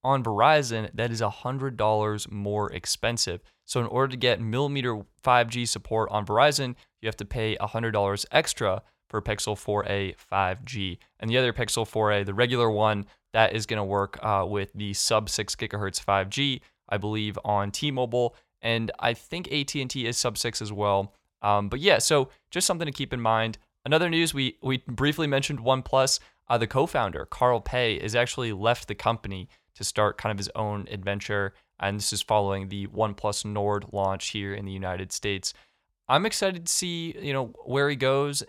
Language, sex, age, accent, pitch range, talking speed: English, male, 20-39, American, 105-130 Hz, 175 wpm